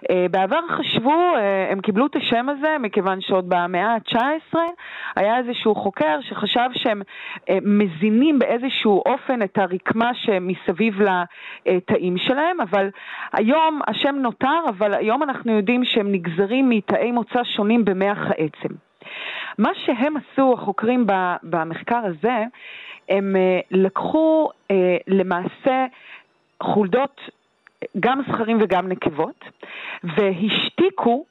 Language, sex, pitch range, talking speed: Hebrew, female, 195-265 Hz, 105 wpm